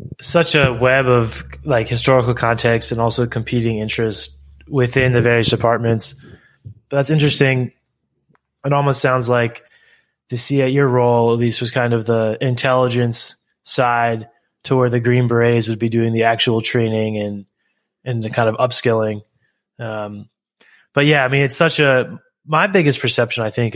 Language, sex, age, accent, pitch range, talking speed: English, male, 20-39, American, 115-130 Hz, 165 wpm